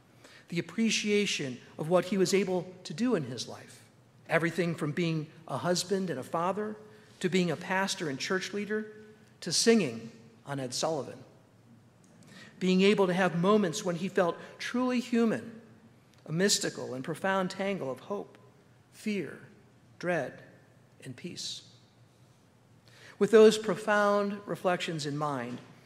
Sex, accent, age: male, American, 50-69